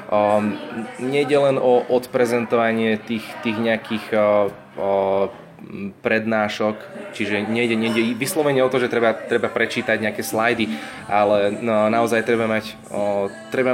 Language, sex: Slovak, male